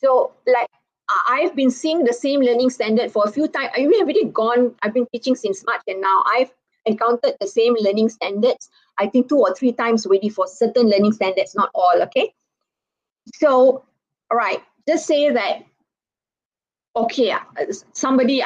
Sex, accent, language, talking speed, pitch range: female, Malaysian, English, 170 wpm, 210-265 Hz